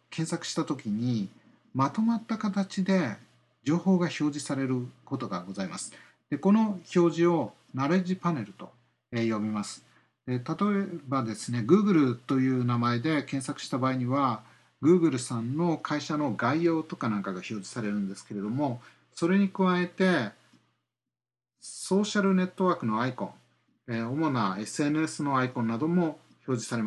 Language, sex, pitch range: Japanese, male, 120-175 Hz